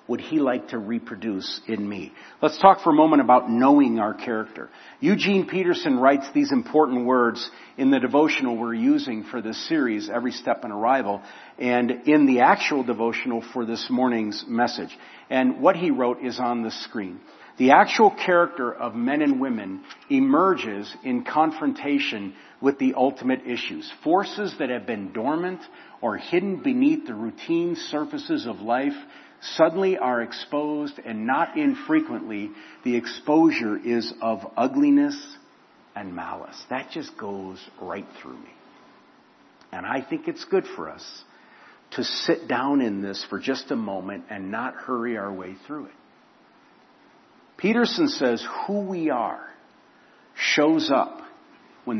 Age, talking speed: 50-69, 150 wpm